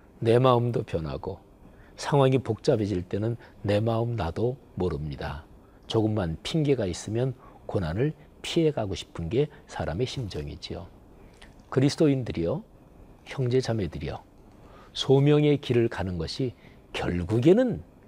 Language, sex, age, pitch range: Korean, male, 40-59, 85-125 Hz